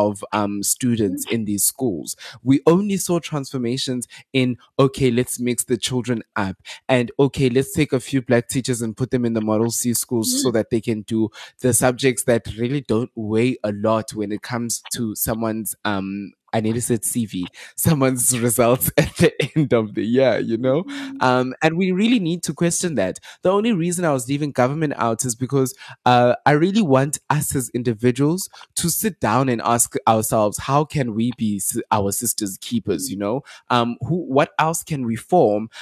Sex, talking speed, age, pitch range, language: male, 190 wpm, 20-39, 120-155 Hz, English